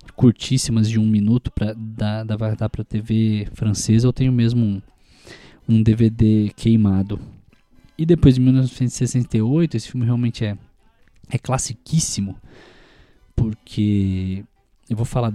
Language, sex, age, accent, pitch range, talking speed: Portuguese, male, 20-39, Brazilian, 110-130 Hz, 120 wpm